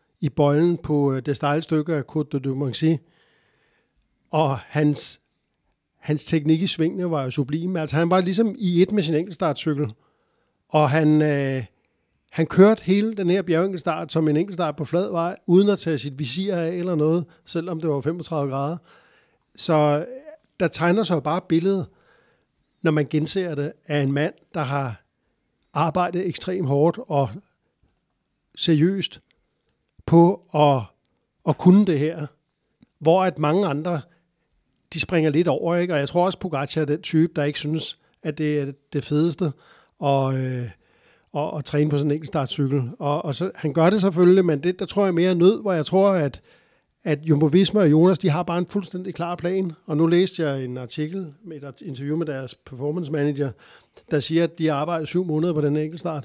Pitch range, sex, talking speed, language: 145-175 Hz, male, 180 wpm, Danish